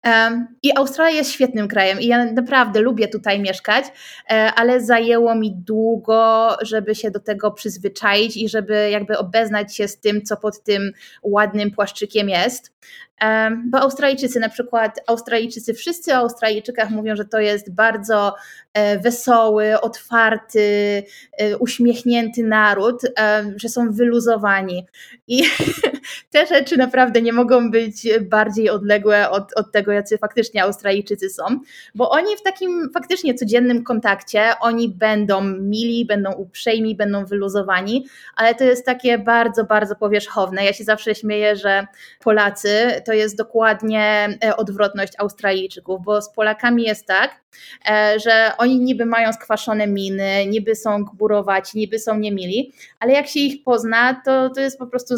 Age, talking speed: 20-39, 140 wpm